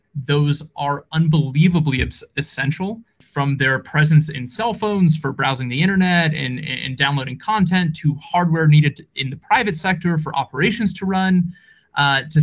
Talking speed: 150 wpm